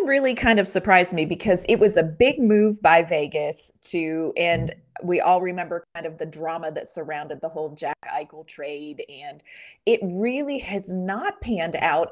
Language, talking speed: English, 180 wpm